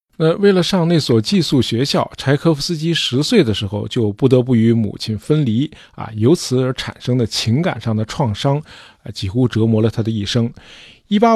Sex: male